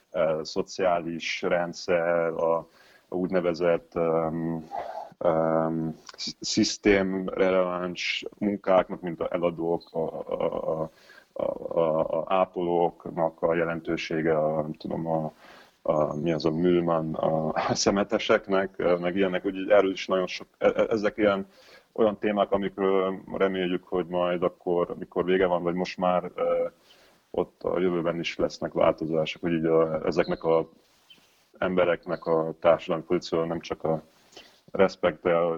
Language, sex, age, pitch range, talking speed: Hungarian, male, 30-49, 80-95 Hz, 120 wpm